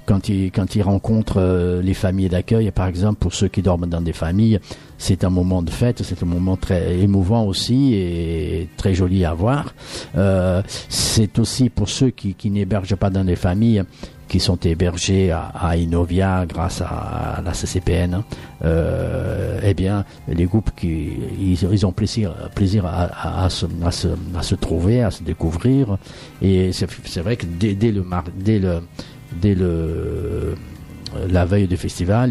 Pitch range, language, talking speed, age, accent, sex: 85-100 Hz, French, 180 wpm, 50-69, French, male